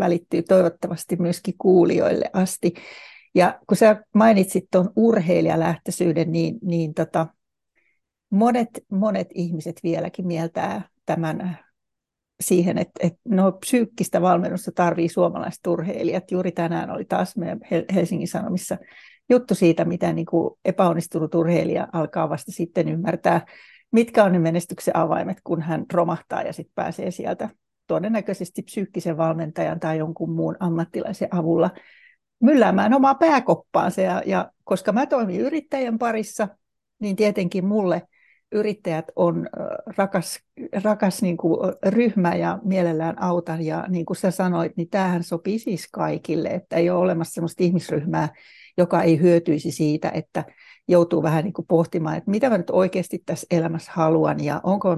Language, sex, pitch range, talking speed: Finnish, female, 170-205 Hz, 135 wpm